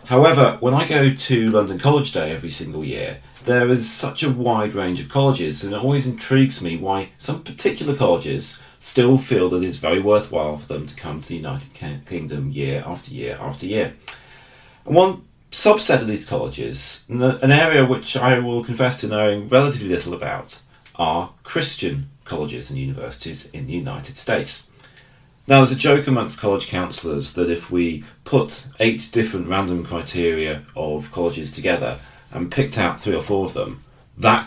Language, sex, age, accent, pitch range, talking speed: English, male, 30-49, British, 90-130 Hz, 170 wpm